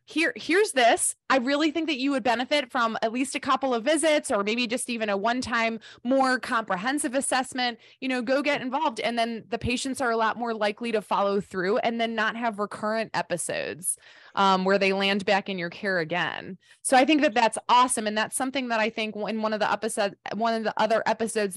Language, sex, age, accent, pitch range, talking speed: English, female, 20-39, American, 195-245 Hz, 225 wpm